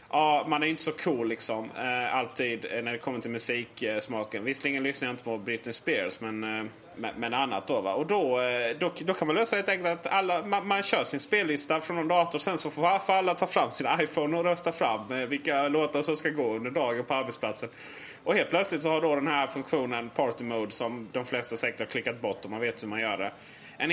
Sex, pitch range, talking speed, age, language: male, 115-155 Hz, 235 wpm, 30-49, Swedish